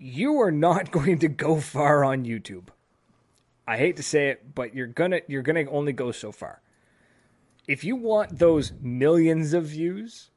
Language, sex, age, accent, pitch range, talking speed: English, male, 30-49, American, 130-175 Hz, 180 wpm